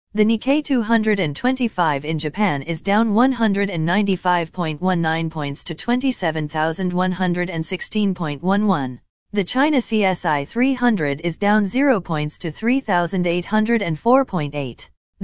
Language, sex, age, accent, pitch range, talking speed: English, female, 40-59, American, 165-220 Hz, 85 wpm